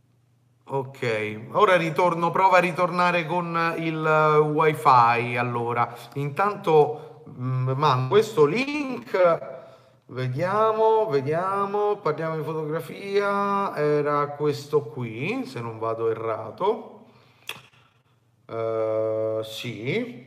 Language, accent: Italian, native